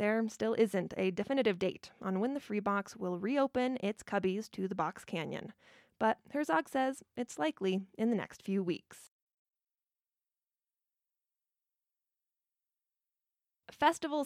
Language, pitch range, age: English, 200-255 Hz, 20-39